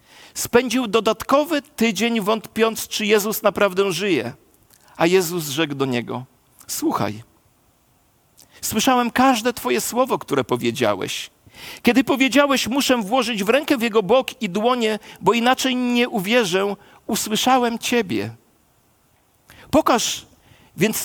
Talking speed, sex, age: 110 wpm, male, 50-69